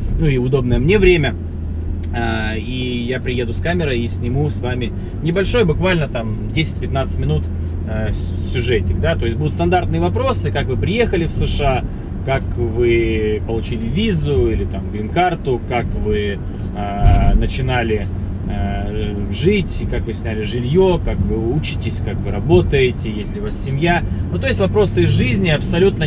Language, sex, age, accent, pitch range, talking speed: Russian, male, 20-39, native, 100-125 Hz, 145 wpm